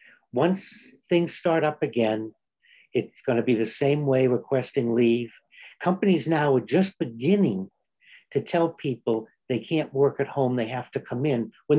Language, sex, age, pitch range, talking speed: English, male, 60-79, 125-160 Hz, 170 wpm